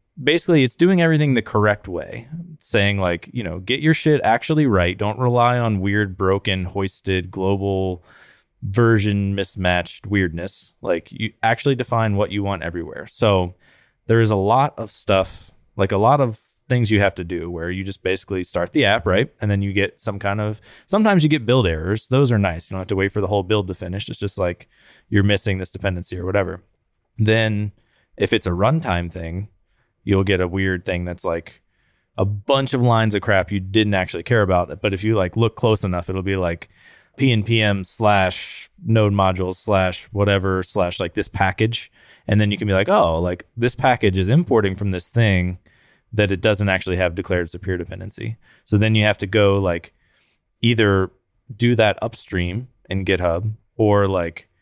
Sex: male